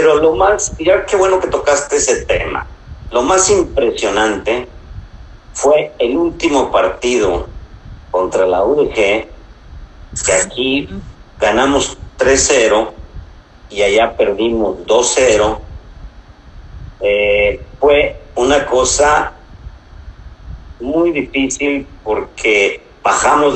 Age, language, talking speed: 50-69, Spanish, 90 wpm